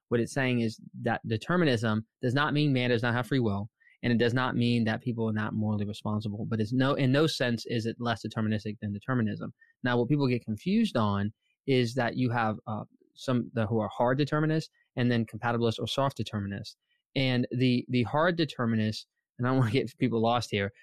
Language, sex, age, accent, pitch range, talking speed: English, male, 20-39, American, 115-140 Hz, 215 wpm